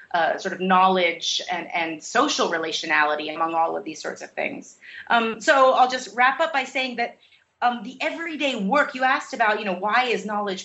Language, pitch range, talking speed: English, 185-245 Hz, 205 wpm